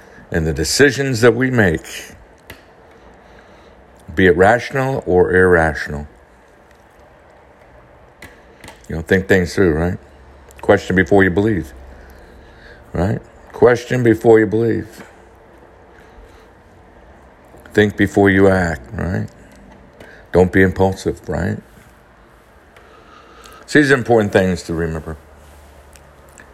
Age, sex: 60-79, male